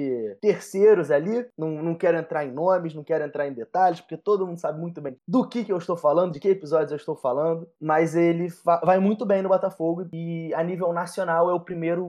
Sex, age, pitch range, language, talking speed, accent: male, 20-39, 145-185 Hz, Portuguese, 230 wpm, Brazilian